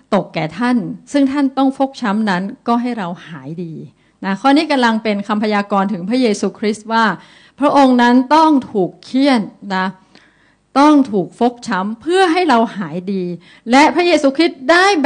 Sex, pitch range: female, 190-260 Hz